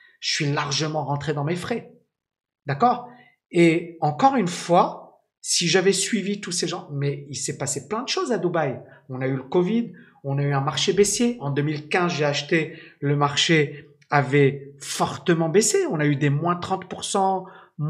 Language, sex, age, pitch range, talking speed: French, male, 50-69, 150-225 Hz, 180 wpm